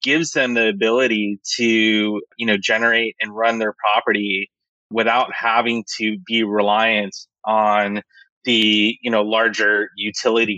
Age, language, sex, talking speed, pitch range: 20-39, English, male, 130 wpm, 105-120 Hz